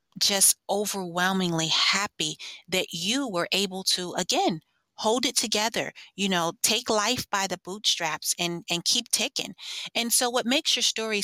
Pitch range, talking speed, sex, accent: 190-255 Hz, 155 wpm, female, American